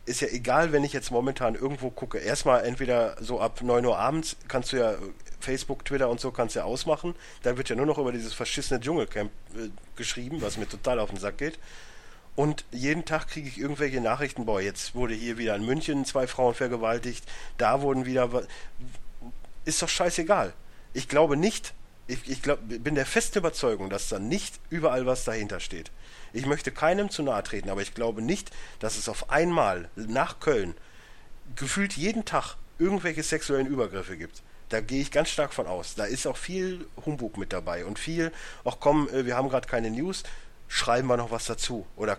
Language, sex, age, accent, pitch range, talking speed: German, male, 40-59, German, 115-145 Hz, 195 wpm